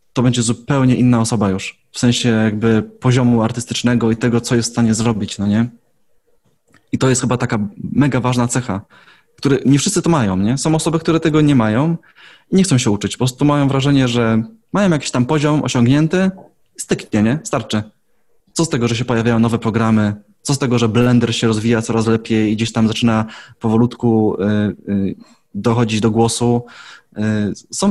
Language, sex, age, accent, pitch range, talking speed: Polish, male, 20-39, native, 115-135 Hz, 180 wpm